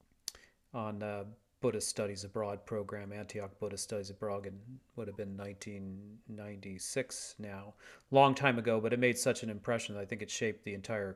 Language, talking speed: English, 170 wpm